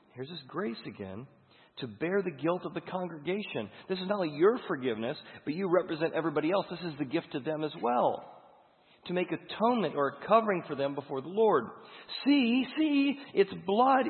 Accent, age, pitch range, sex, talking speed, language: American, 40-59, 115-170 Hz, male, 190 wpm, English